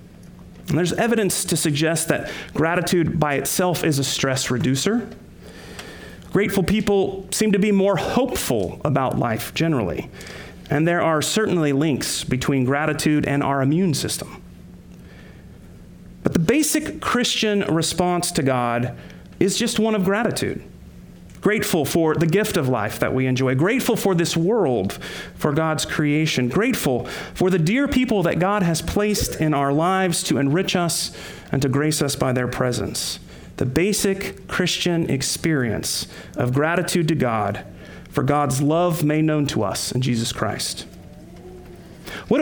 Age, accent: 40-59, American